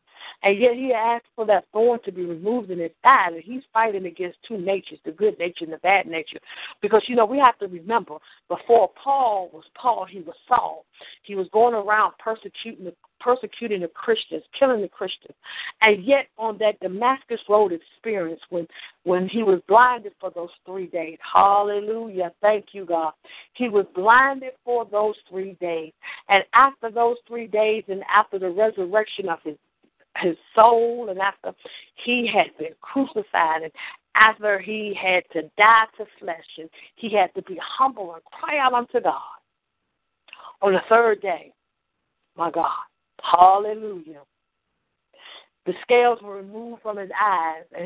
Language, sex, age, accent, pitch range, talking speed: English, female, 50-69, American, 180-230 Hz, 165 wpm